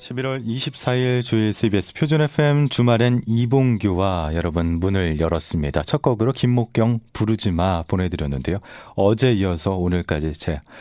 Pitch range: 85-120 Hz